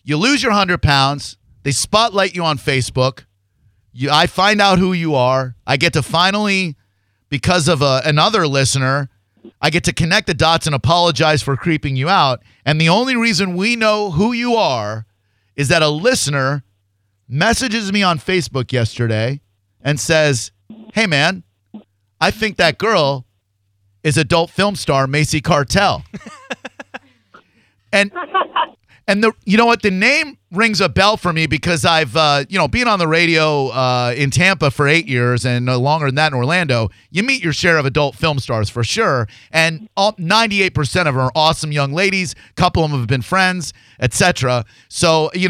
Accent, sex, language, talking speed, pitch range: American, male, English, 175 wpm, 130-185 Hz